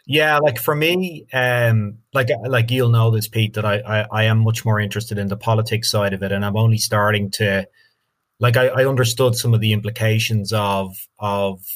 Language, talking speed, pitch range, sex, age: English, 205 wpm, 105-115 Hz, male, 30-49